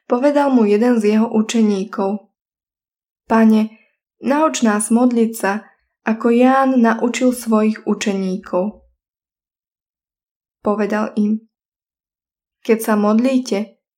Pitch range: 210-245 Hz